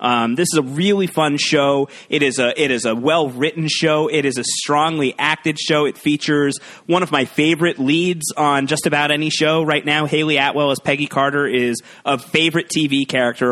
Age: 30-49